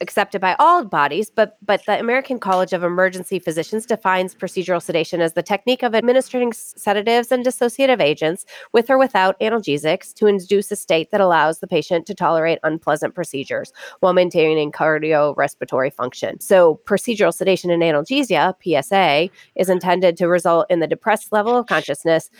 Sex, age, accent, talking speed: female, 30-49, American, 160 wpm